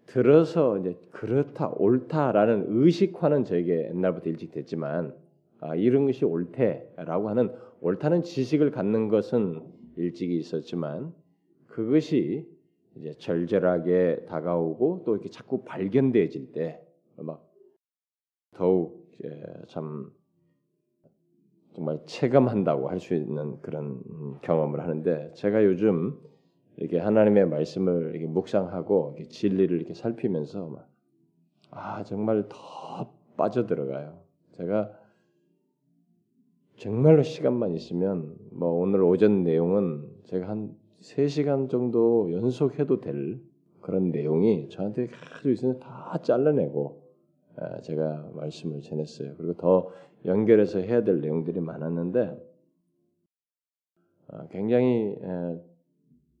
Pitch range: 85-120 Hz